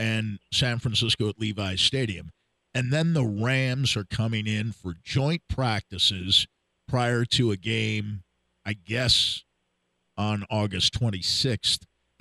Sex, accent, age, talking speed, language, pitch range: male, American, 50-69, 125 wpm, English, 90-120 Hz